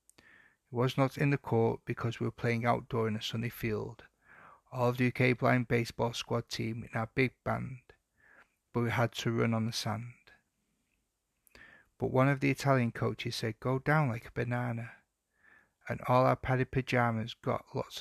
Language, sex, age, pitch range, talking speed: English, male, 30-49, 115-125 Hz, 180 wpm